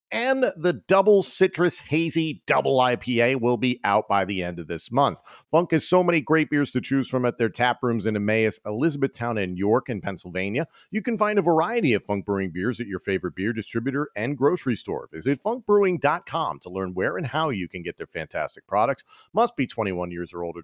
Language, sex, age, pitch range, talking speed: English, male, 40-59, 110-160 Hz, 210 wpm